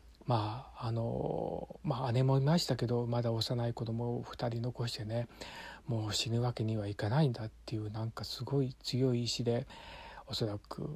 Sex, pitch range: male, 110-160 Hz